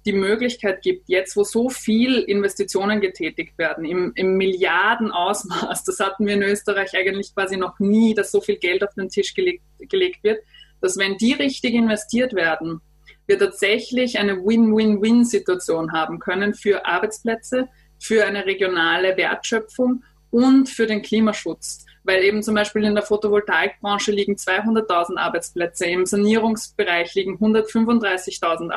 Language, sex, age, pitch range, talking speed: German, female, 20-39, 190-225 Hz, 140 wpm